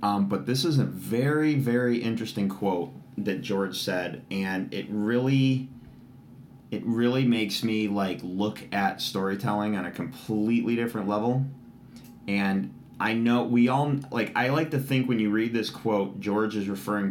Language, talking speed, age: English, 160 wpm, 30-49